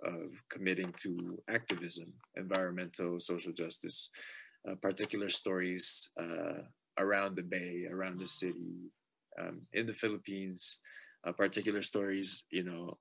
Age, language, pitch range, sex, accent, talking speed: 20-39, English, 90-105 Hz, male, Canadian, 120 wpm